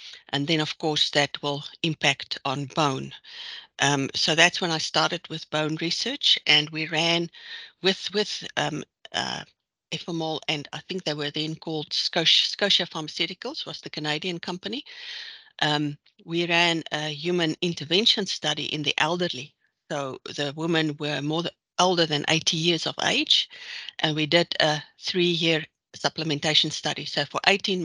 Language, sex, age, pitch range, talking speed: English, female, 60-79, 150-175 Hz, 155 wpm